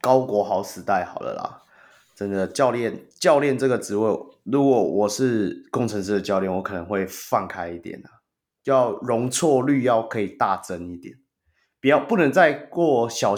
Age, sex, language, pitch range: 20-39, male, Chinese, 100-130 Hz